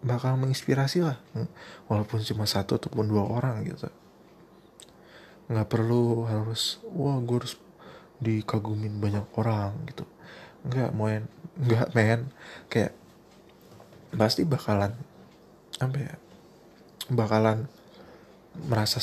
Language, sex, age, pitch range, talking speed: Indonesian, male, 20-39, 110-130 Hz, 100 wpm